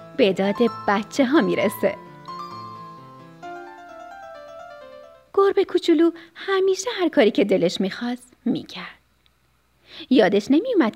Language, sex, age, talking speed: Persian, female, 30-49, 90 wpm